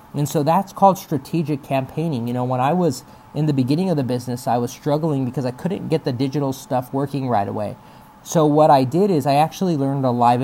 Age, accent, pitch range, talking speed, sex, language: 30-49, American, 125-160 Hz, 230 wpm, male, English